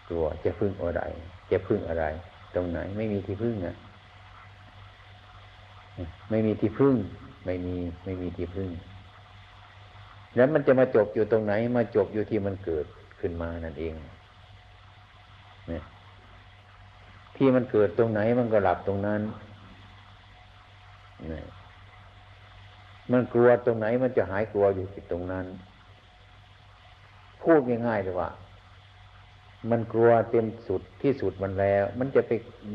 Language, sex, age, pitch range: Thai, male, 60-79, 95-105 Hz